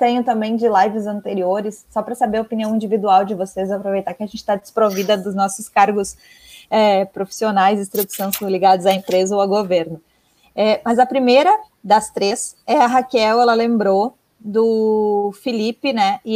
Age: 20-39